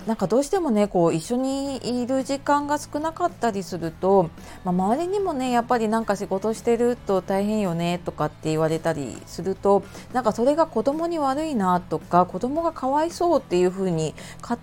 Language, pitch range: Japanese, 175-265 Hz